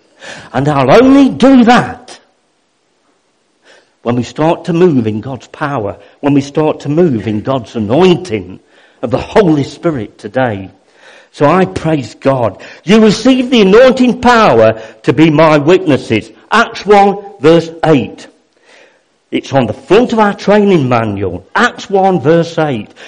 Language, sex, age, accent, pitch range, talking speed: English, male, 50-69, British, 160-255 Hz, 145 wpm